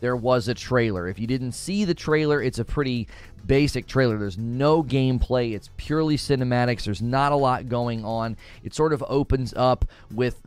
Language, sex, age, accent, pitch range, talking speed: English, male, 30-49, American, 115-140 Hz, 190 wpm